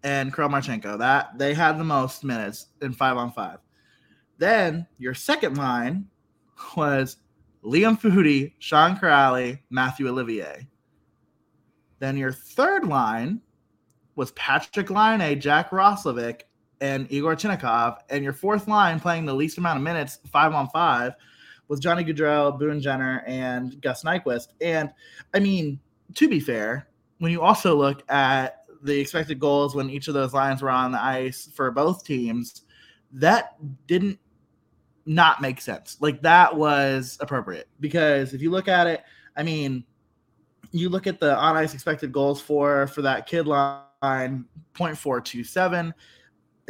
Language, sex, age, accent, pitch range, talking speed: English, male, 20-39, American, 130-160 Hz, 145 wpm